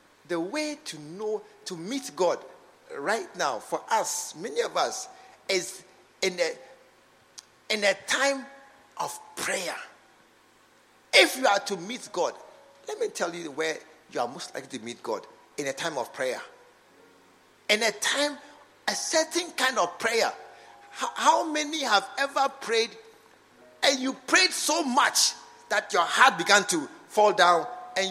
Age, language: 50-69, English